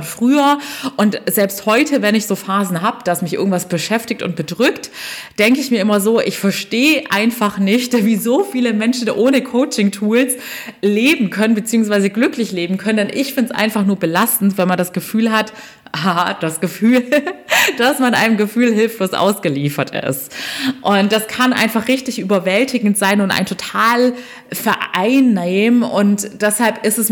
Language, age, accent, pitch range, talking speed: German, 30-49, German, 195-230 Hz, 160 wpm